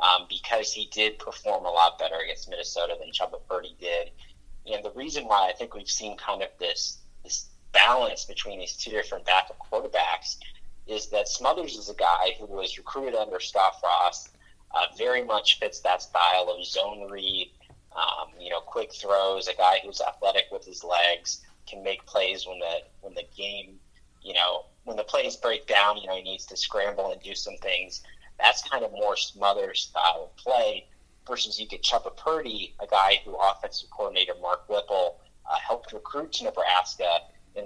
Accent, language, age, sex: American, English, 30-49, male